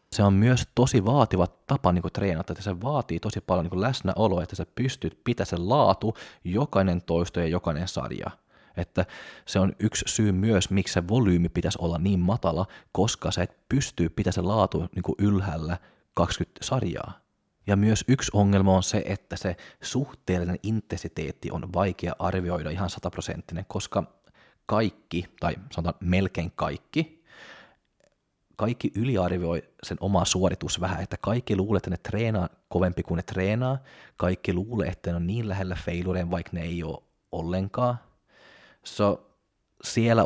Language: Finnish